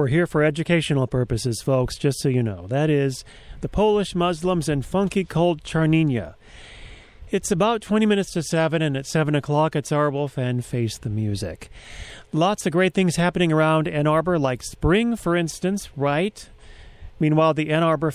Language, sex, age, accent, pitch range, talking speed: English, male, 40-59, American, 135-175 Hz, 170 wpm